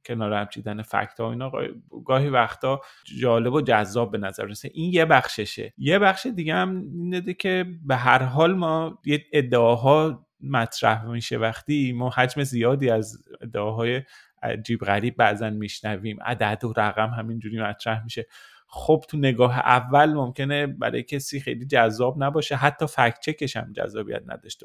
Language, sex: Persian, male